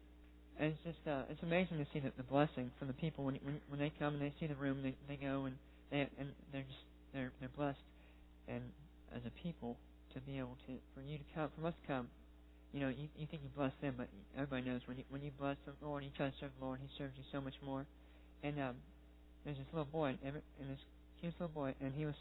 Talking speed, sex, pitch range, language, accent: 265 wpm, male, 115-140 Hz, English, American